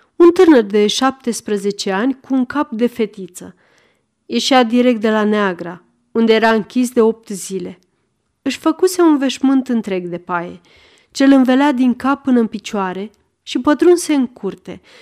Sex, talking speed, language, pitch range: female, 155 wpm, Romanian, 200-265 Hz